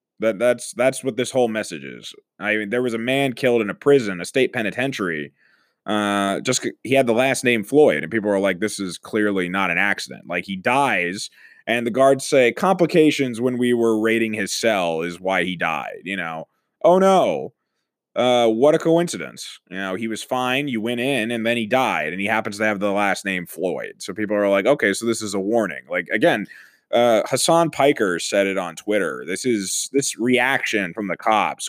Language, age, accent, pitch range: English, 20-39, American, 105-135 Hz